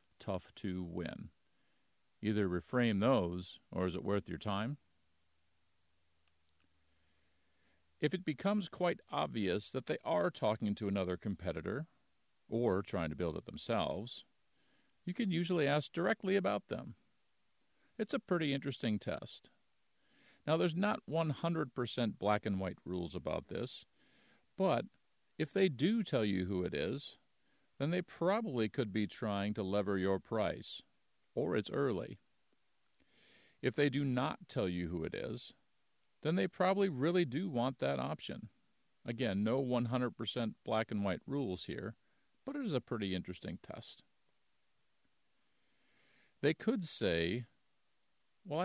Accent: American